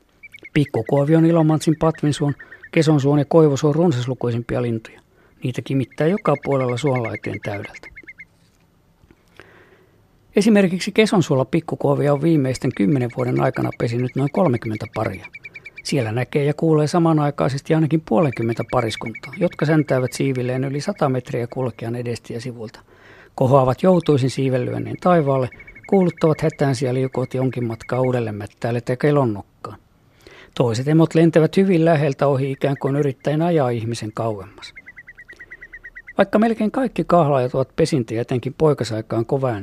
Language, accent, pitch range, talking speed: Finnish, native, 120-160 Hz, 115 wpm